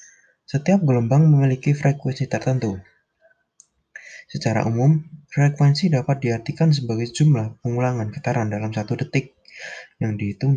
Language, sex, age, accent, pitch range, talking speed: Indonesian, male, 20-39, native, 115-140 Hz, 110 wpm